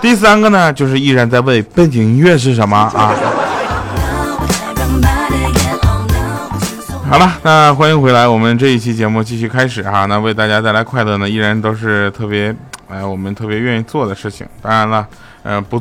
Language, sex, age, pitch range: Chinese, male, 20-39, 105-150 Hz